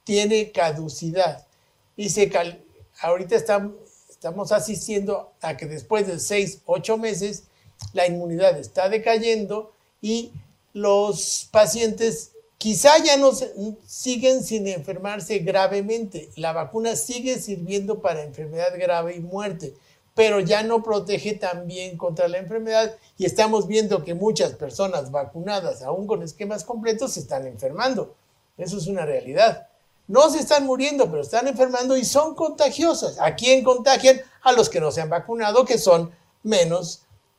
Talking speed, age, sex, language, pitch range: 145 wpm, 50-69, male, Spanish, 180-225 Hz